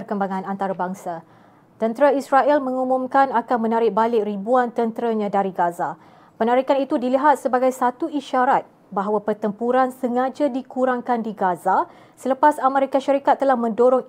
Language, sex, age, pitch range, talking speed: Malay, female, 20-39, 200-255 Hz, 125 wpm